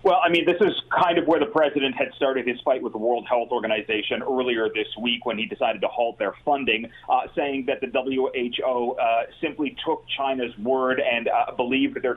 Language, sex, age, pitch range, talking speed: English, male, 30-49, 120-145 Hz, 210 wpm